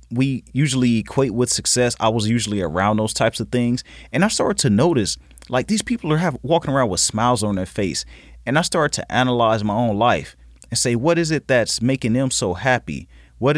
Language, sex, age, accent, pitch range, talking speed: English, male, 30-49, American, 105-135 Hz, 215 wpm